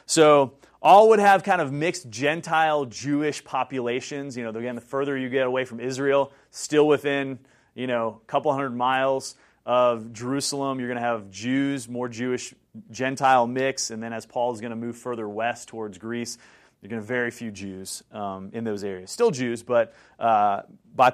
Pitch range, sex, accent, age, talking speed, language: 115-145 Hz, male, American, 30-49, 185 wpm, English